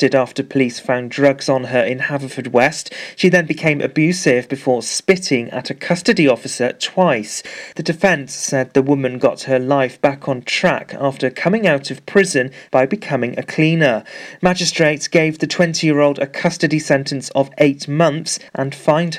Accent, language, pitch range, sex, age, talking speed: British, English, 130-165 Hz, male, 40-59, 165 wpm